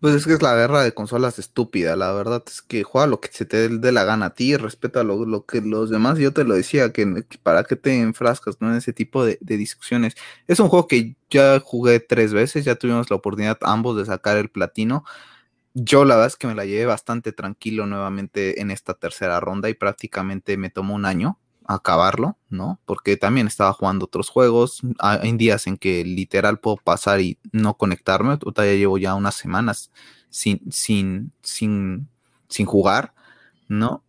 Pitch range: 105-125 Hz